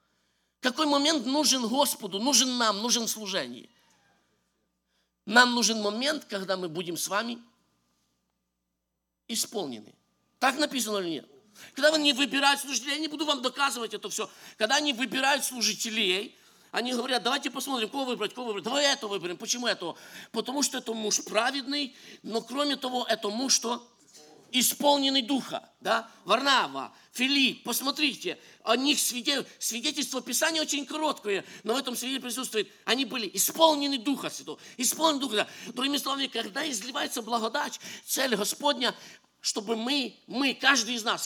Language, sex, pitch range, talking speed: English, male, 215-275 Hz, 145 wpm